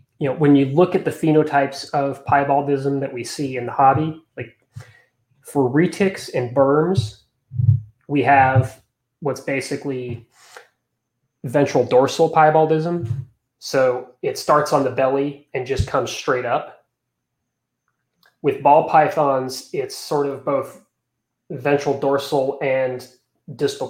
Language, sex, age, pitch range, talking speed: English, male, 30-49, 125-150 Hz, 125 wpm